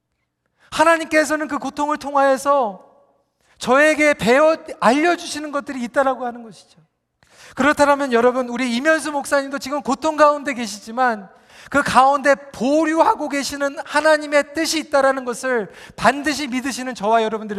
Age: 40-59